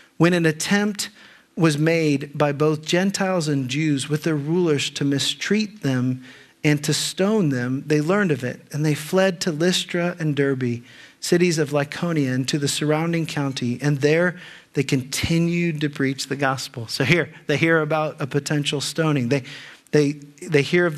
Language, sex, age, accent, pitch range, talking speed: English, male, 40-59, American, 140-160 Hz, 170 wpm